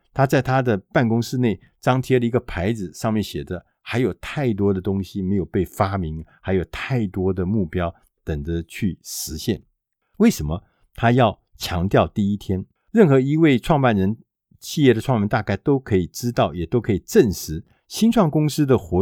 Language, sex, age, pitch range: Chinese, male, 50-69, 90-125 Hz